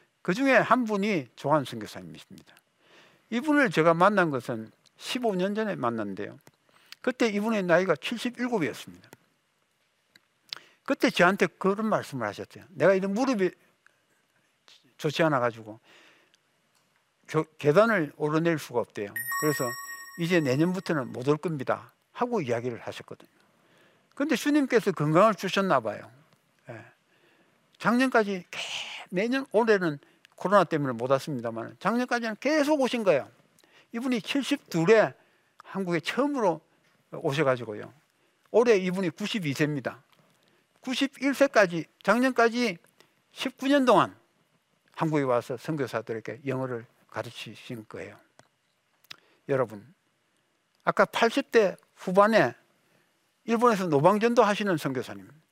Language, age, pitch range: Korean, 60-79, 145-240 Hz